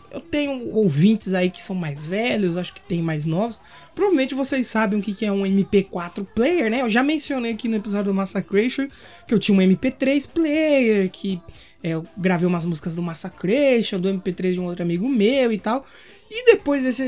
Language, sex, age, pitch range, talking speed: Portuguese, male, 20-39, 190-280 Hz, 195 wpm